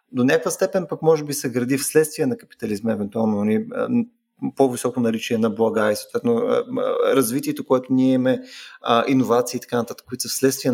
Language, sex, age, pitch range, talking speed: Bulgarian, male, 30-49, 120-155 Hz, 160 wpm